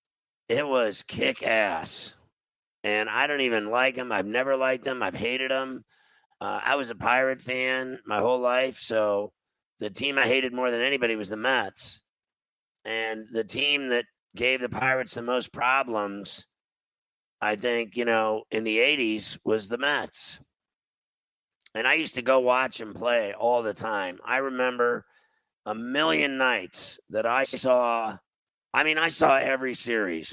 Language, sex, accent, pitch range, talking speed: English, male, American, 115-135 Hz, 160 wpm